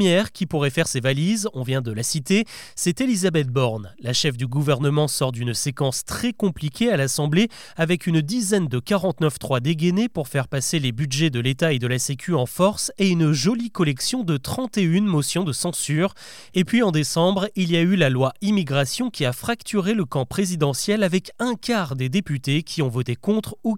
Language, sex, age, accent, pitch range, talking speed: French, male, 30-49, French, 140-195 Hz, 205 wpm